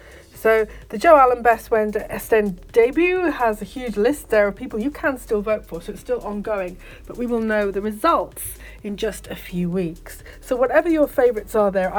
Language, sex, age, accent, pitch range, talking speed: English, female, 30-49, British, 185-220 Hz, 205 wpm